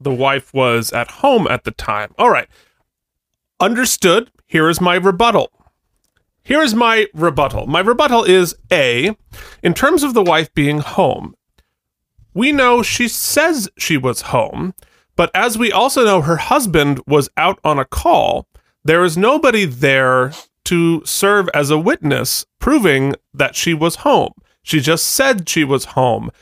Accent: American